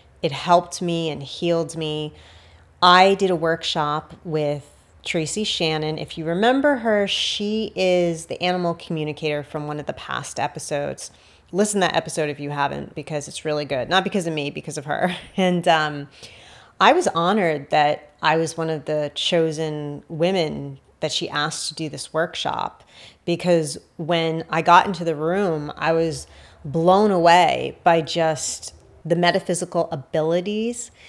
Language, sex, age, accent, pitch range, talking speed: English, female, 30-49, American, 155-180 Hz, 160 wpm